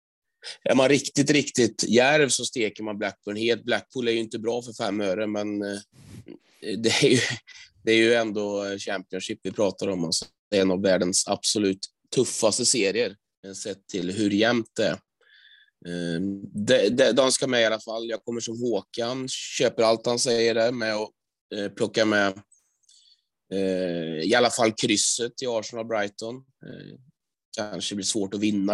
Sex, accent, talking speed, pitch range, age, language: male, native, 165 wpm, 100-115 Hz, 20-39, Swedish